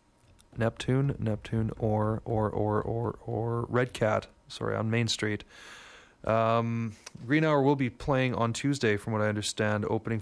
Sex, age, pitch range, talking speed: male, 30-49, 110-125 Hz, 155 wpm